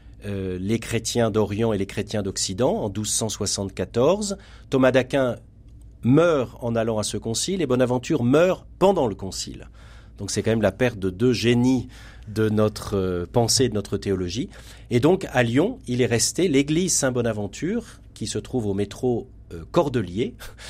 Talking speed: 155 wpm